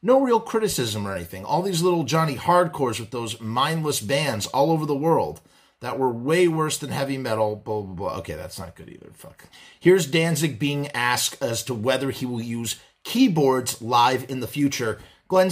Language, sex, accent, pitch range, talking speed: English, male, American, 125-165 Hz, 195 wpm